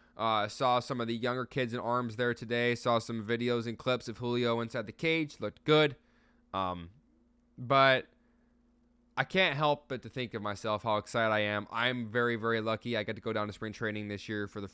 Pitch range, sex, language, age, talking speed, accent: 105-125 Hz, male, English, 20-39, 215 wpm, American